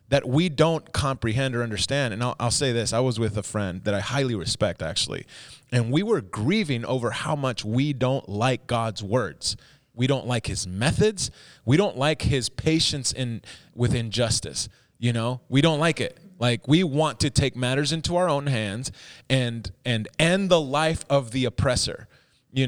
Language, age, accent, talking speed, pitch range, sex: English, 30-49, American, 190 wpm, 115-145 Hz, male